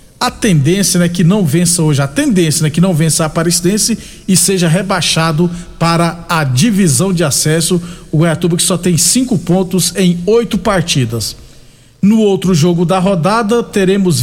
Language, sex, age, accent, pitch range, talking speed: Portuguese, male, 50-69, Brazilian, 170-200 Hz, 165 wpm